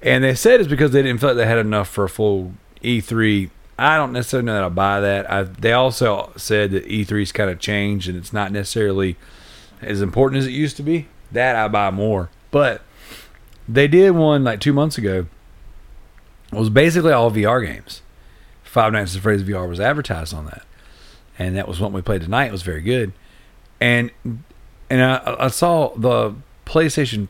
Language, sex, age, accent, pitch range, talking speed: English, male, 40-59, American, 100-135 Hz, 195 wpm